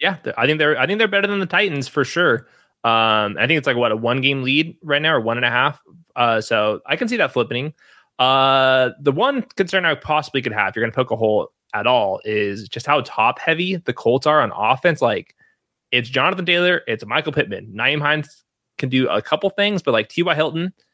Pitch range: 115-150 Hz